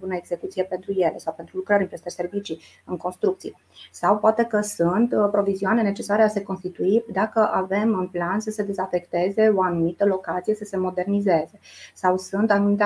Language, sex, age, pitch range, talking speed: Romanian, female, 30-49, 180-210 Hz, 175 wpm